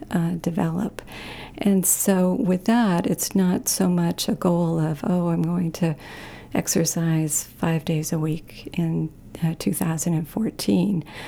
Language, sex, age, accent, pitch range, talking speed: English, female, 50-69, American, 160-185 Hz, 135 wpm